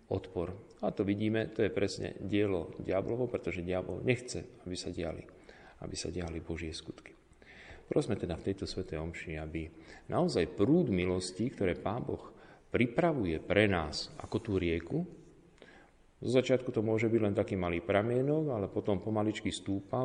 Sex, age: male, 40-59